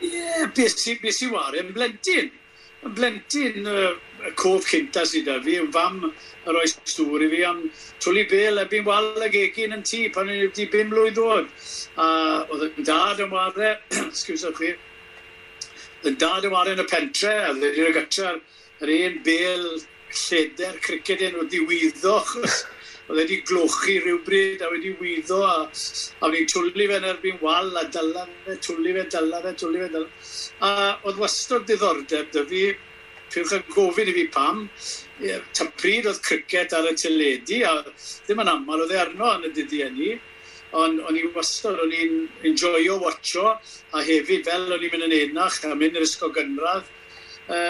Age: 60-79